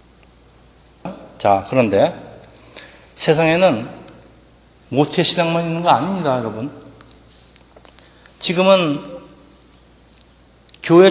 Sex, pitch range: male, 130-175 Hz